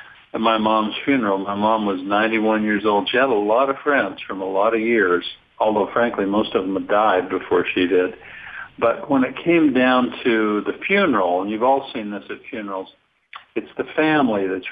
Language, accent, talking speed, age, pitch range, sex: English, American, 205 wpm, 60-79, 100-120 Hz, male